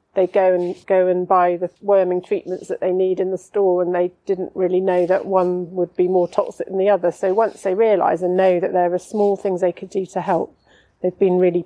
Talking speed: 245 wpm